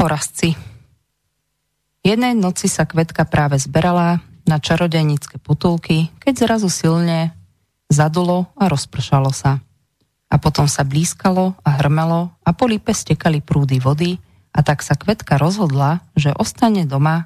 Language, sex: Slovak, female